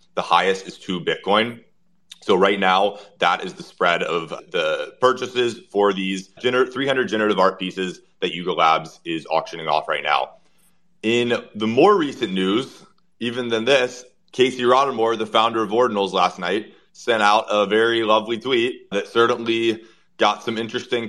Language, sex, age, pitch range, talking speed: English, male, 30-49, 95-120 Hz, 160 wpm